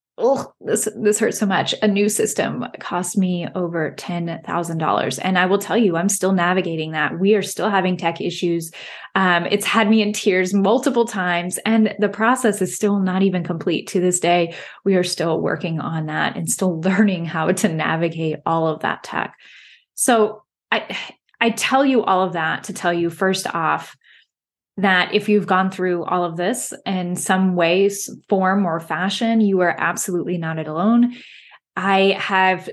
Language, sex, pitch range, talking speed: English, female, 175-210 Hz, 180 wpm